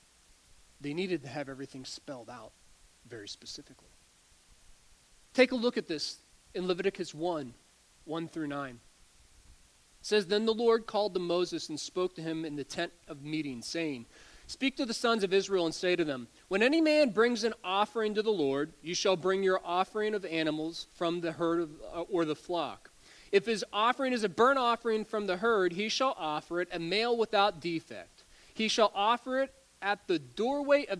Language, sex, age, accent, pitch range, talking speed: English, male, 30-49, American, 155-220 Hz, 190 wpm